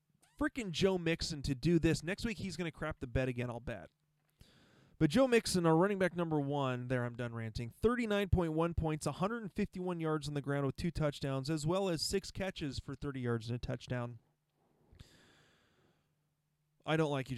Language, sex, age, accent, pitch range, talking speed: English, male, 20-39, American, 140-185 Hz, 185 wpm